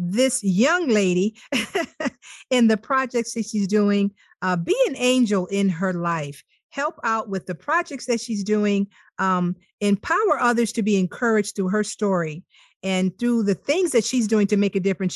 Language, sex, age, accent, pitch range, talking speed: English, female, 50-69, American, 195-245 Hz, 175 wpm